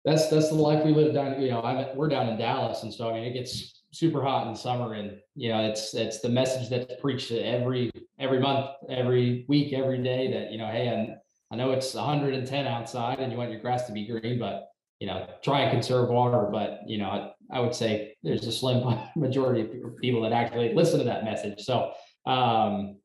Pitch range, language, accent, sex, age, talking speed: 110-130 Hz, English, American, male, 20-39, 230 wpm